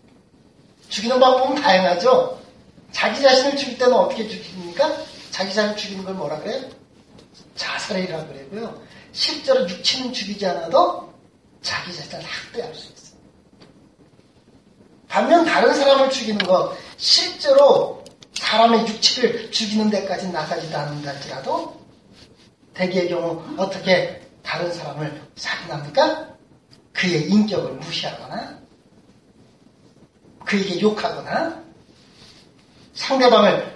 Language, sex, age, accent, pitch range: Korean, male, 30-49, native, 175-250 Hz